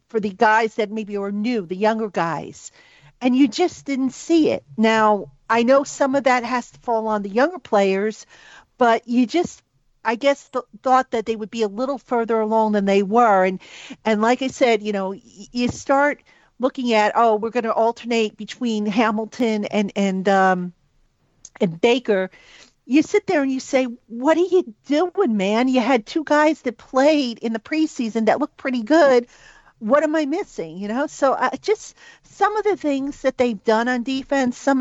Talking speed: 200 wpm